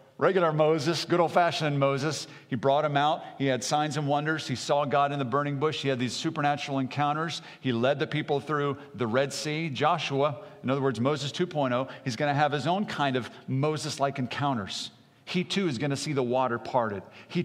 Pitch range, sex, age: 125-150 Hz, male, 50-69